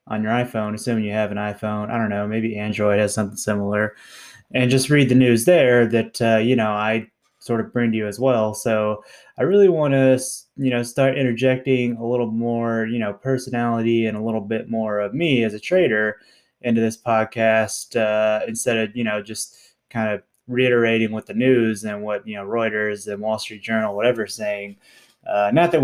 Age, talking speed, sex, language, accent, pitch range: 20-39, 205 wpm, male, English, American, 110-130 Hz